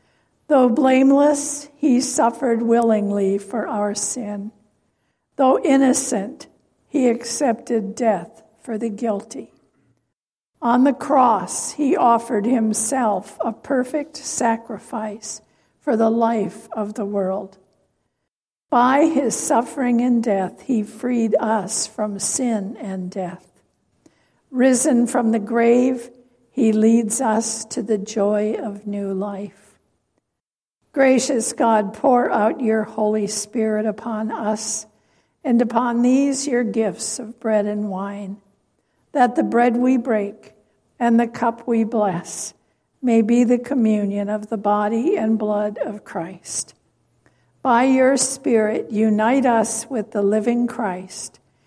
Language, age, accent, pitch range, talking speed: English, 60-79, American, 210-245 Hz, 120 wpm